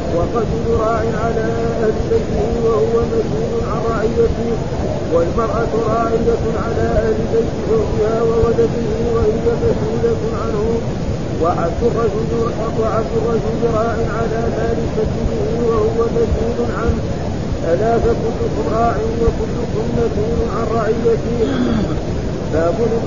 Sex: male